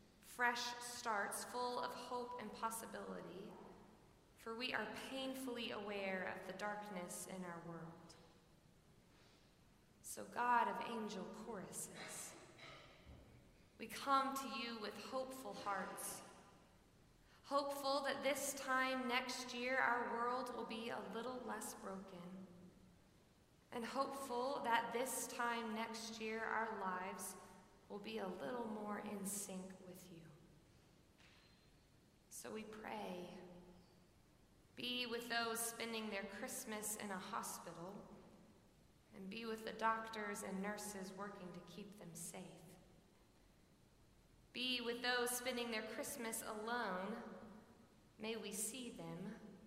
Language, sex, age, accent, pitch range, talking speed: English, female, 20-39, American, 190-240 Hz, 115 wpm